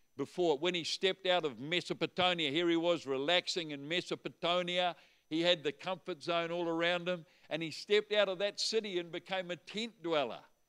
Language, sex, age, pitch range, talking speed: English, male, 50-69, 145-175 Hz, 185 wpm